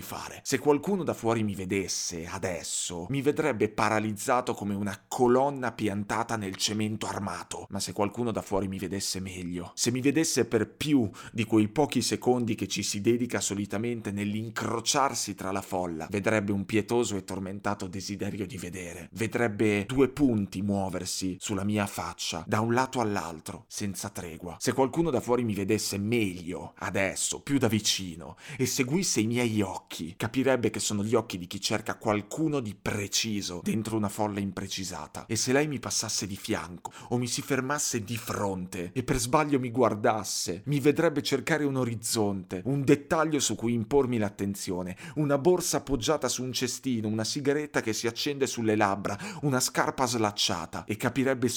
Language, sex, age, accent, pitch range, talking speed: Italian, male, 30-49, native, 100-125 Hz, 165 wpm